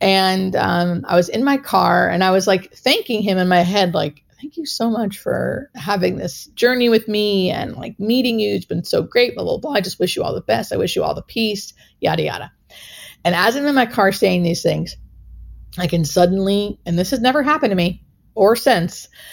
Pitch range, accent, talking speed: 180-235 Hz, American, 220 wpm